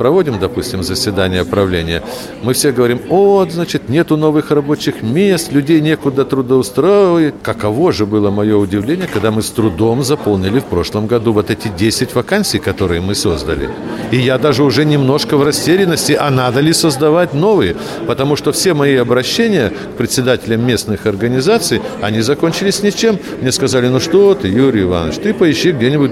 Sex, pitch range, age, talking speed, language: male, 110-145 Hz, 60-79, 160 wpm, Russian